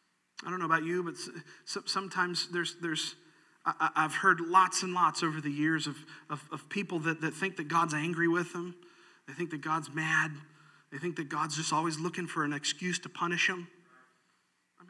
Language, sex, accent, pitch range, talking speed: English, male, American, 175-250 Hz, 195 wpm